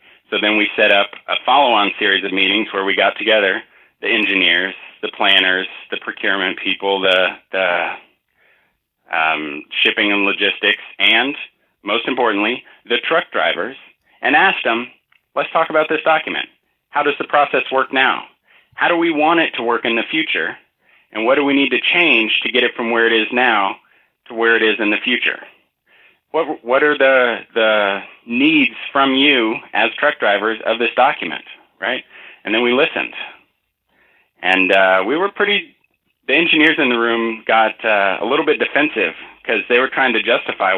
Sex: male